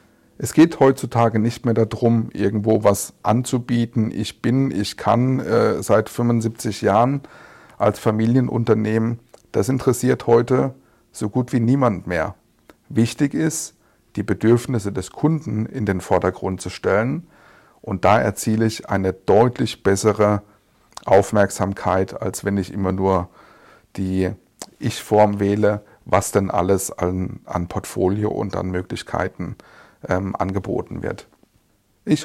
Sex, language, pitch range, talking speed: male, German, 100-115 Hz, 120 wpm